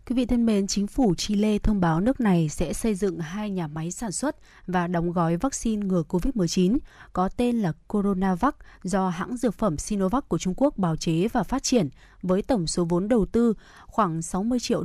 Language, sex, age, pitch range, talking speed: Vietnamese, female, 20-39, 185-230 Hz, 205 wpm